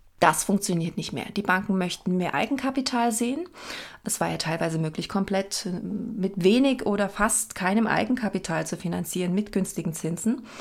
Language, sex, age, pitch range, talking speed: German, female, 30-49, 180-225 Hz, 155 wpm